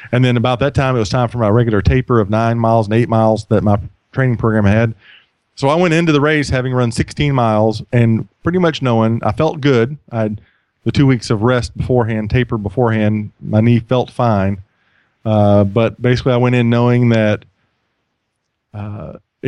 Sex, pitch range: male, 105-125 Hz